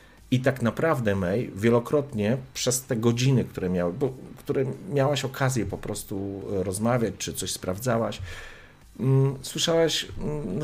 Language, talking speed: Polish, 130 wpm